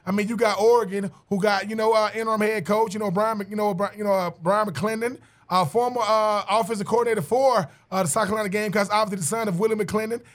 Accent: American